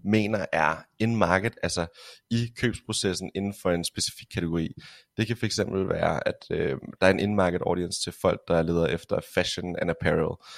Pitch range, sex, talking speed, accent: 95-115 Hz, male, 195 wpm, native